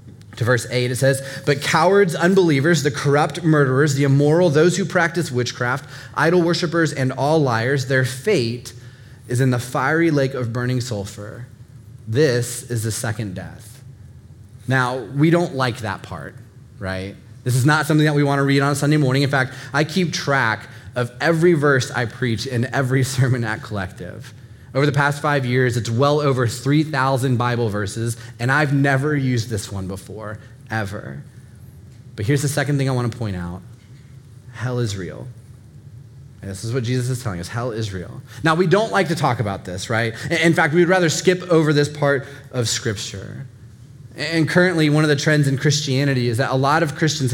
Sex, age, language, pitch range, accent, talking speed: male, 20-39, English, 120-145 Hz, American, 185 wpm